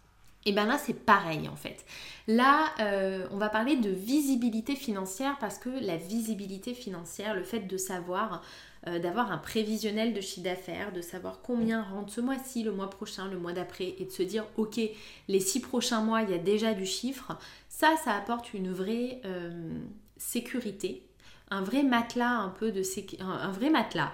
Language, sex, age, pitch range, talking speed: English, female, 20-39, 180-235 Hz, 160 wpm